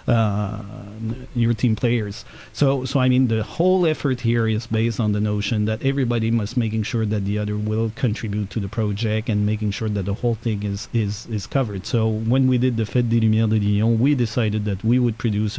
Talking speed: 220 wpm